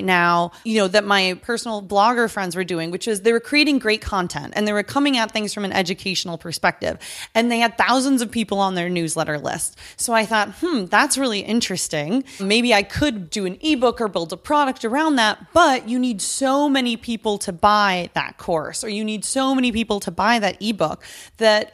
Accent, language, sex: American, English, female